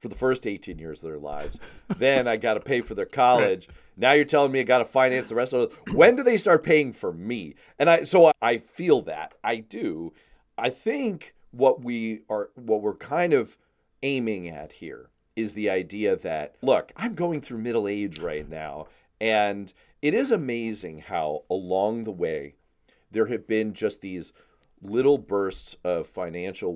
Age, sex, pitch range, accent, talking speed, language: 40-59, male, 95-130 Hz, American, 190 wpm, English